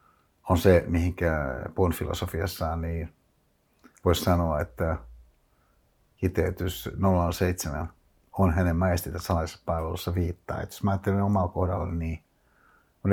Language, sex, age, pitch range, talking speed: Finnish, male, 60-79, 85-95 Hz, 105 wpm